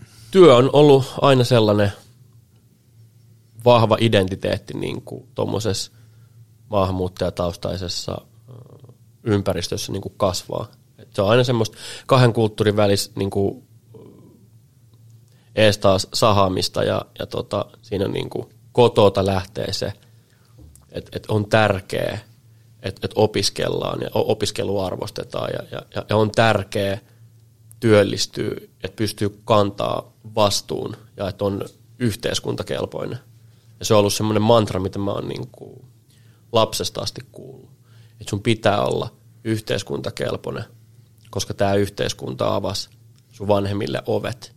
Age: 30-49